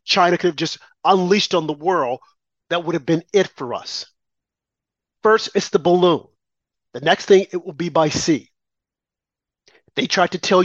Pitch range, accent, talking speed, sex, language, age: 155-205 Hz, American, 175 wpm, male, English, 40-59